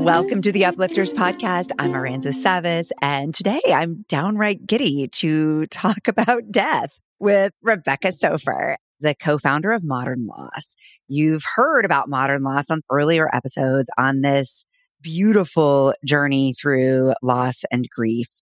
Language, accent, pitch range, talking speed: English, American, 135-185 Hz, 135 wpm